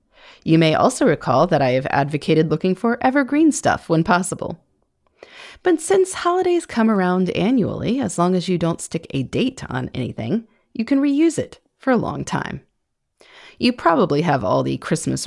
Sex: female